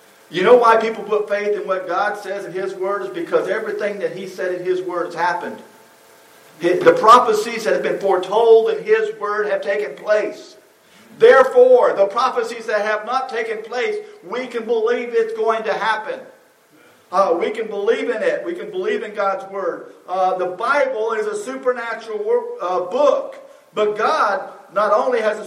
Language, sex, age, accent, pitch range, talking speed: English, male, 50-69, American, 185-295 Hz, 180 wpm